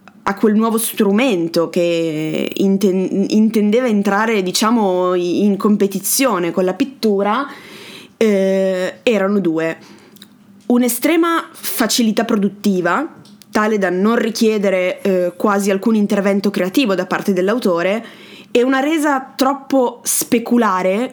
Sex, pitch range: female, 195-240 Hz